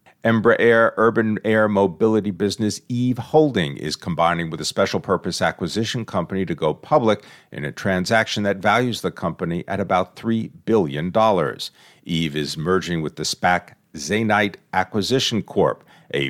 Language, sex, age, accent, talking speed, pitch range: English, male, 50-69, American, 145 wpm, 90-120 Hz